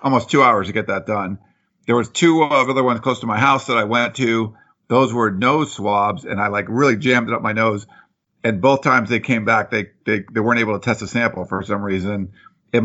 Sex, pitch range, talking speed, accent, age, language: male, 105-135 Hz, 245 wpm, American, 50-69, English